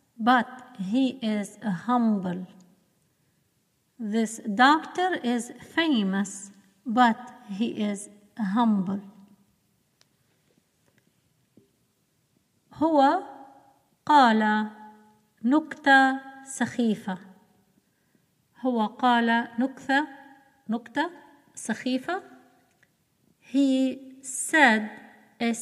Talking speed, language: 55 wpm, Arabic